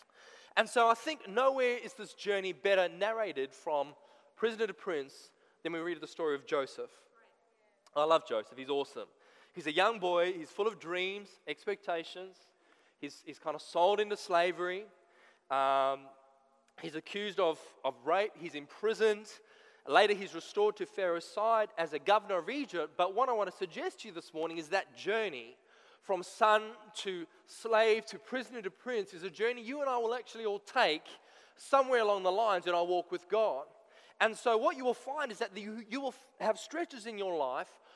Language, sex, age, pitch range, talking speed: English, male, 20-39, 180-245 Hz, 185 wpm